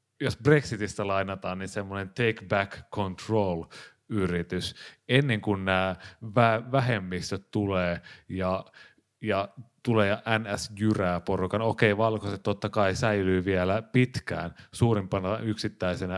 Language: Finnish